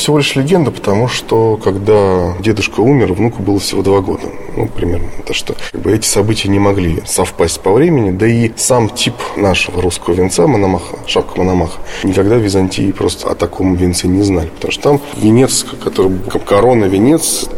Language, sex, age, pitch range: Russian, male, 20-39, 95-115 Hz